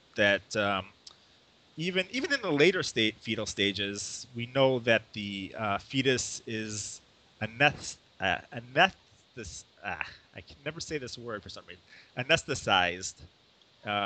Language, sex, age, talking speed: English, male, 30-49, 140 wpm